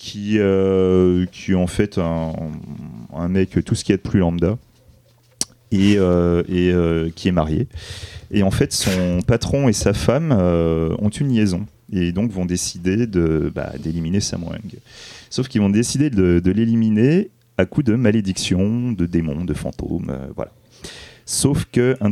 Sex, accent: male, French